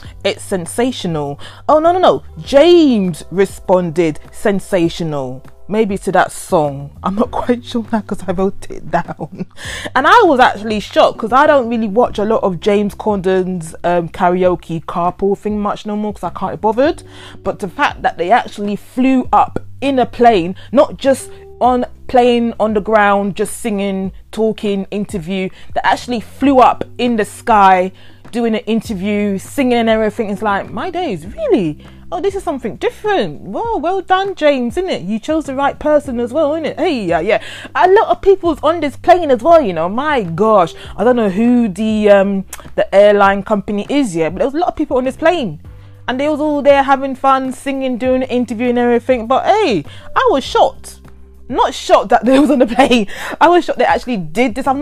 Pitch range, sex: 190-265 Hz, female